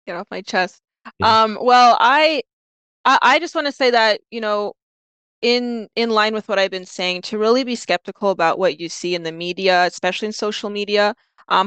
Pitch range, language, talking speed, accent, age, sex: 180-225 Hz, English, 205 wpm, American, 20-39, female